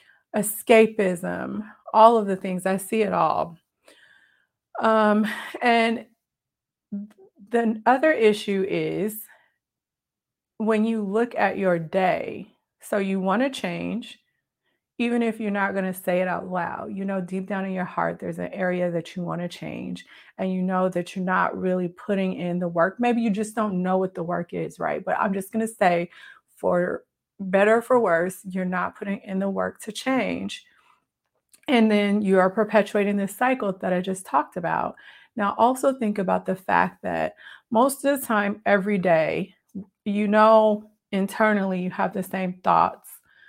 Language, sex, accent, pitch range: English, female, American, 185-215 Hz